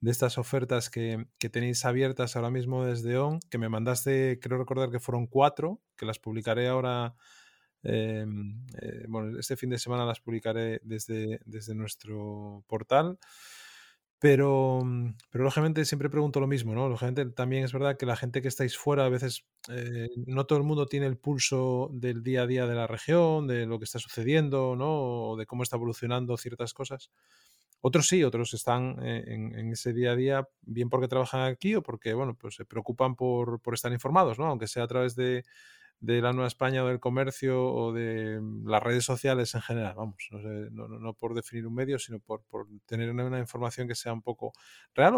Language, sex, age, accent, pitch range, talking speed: Spanish, male, 20-39, Spanish, 115-135 Hz, 200 wpm